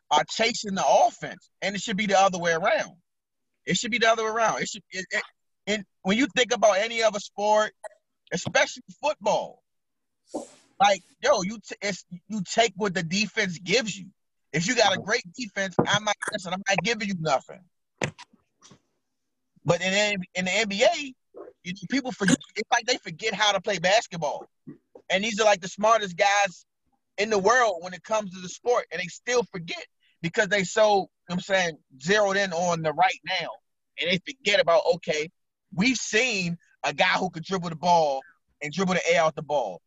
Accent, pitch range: American, 175-220 Hz